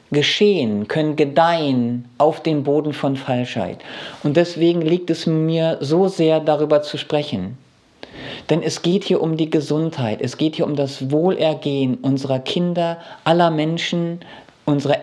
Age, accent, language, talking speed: 50-69, German, German, 145 wpm